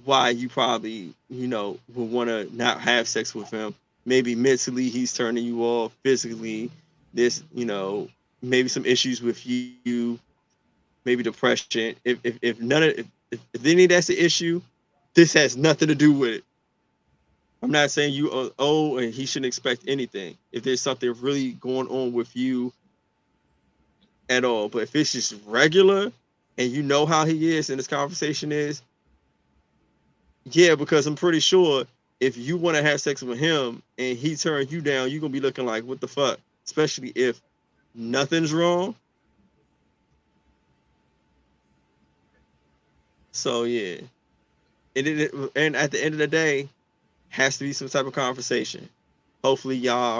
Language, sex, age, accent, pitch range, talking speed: English, male, 20-39, American, 120-150 Hz, 160 wpm